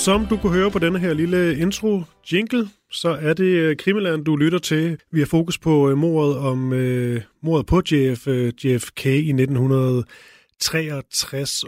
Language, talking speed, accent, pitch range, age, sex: Danish, 155 wpm, native, 130-160 Hz, 30-49, male